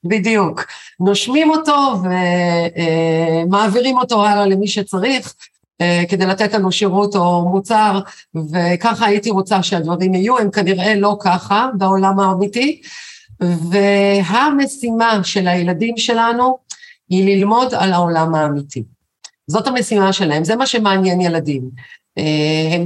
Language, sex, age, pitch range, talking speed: Hebrew, female, 50-69, 175-235 Hz, 110 wpm